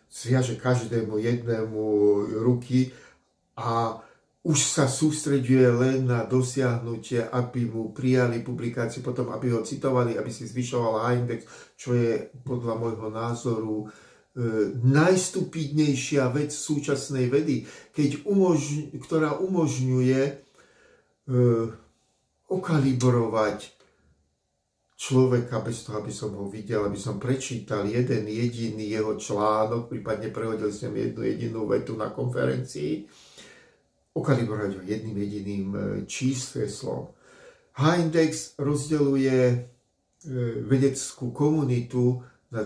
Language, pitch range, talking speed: Slovak, 110-140 Hz, 95 wpm